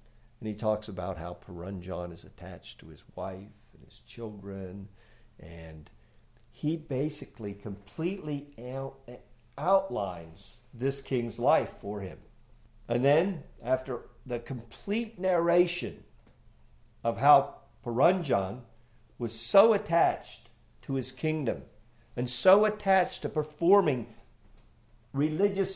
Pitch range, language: 110-150 Hz, English